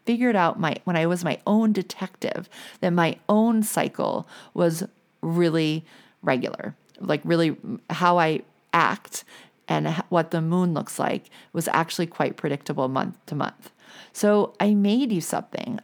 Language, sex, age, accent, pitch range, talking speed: English, female, 40-59, American, 165-210 Hz, 150 wpm